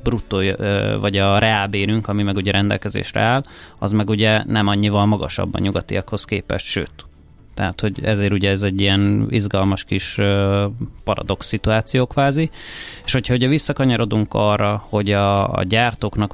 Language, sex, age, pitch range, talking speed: Hungarian, male, 30-49, 100-120 Hz, 145 wpm